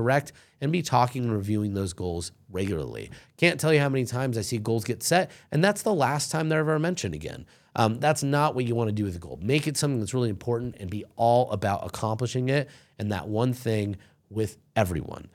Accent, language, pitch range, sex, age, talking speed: American, English, 105-145 Hz, male, 30-49, 225 wpm